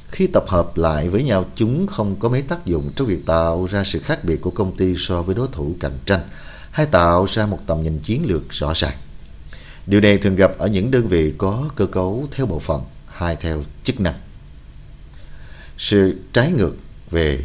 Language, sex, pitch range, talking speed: Vietnamese, male, 80-115 Hz, 205 wpm